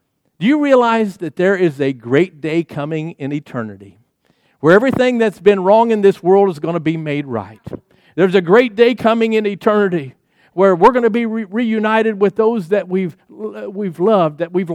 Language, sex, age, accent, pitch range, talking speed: English, male, 50-69, American, 165-215 Hz, 195 wpm